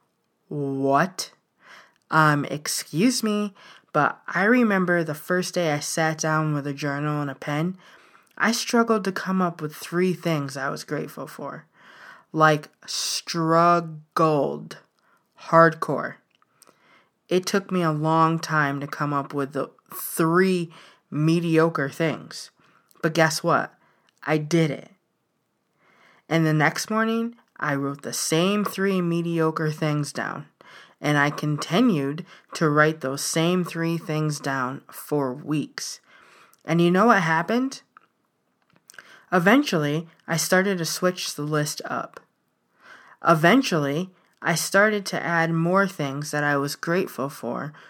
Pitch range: 150-185 Hz